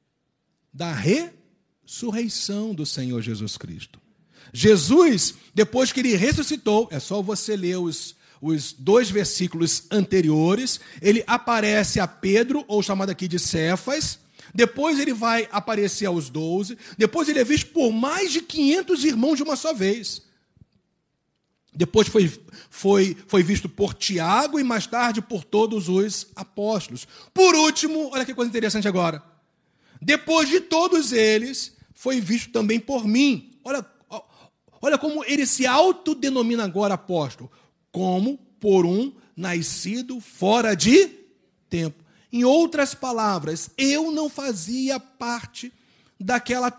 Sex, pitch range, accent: male, 195-270 Hz, Brazilian